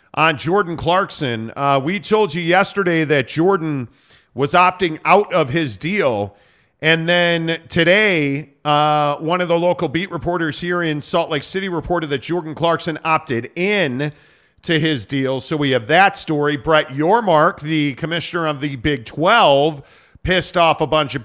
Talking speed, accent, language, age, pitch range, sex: 165 wpm, American, English, 40-59, 145-180 Hz, male